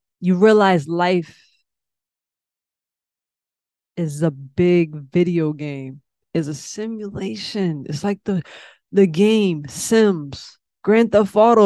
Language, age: English, 20-39